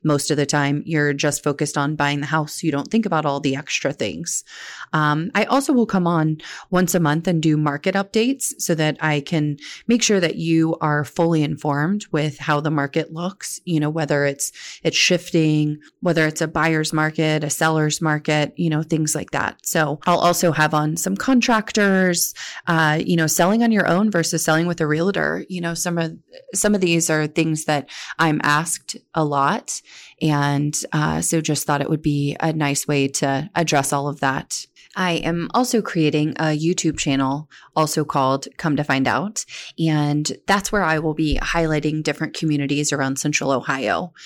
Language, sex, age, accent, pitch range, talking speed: English, female, 30-49, American, 150-175 Hz, 195 wpm